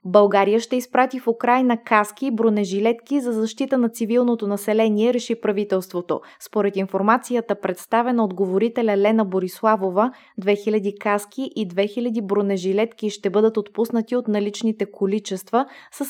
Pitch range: 200-235 Hz